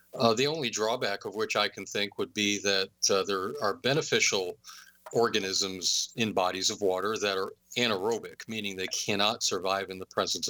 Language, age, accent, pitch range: English, 40-59, American, 95-110 Hz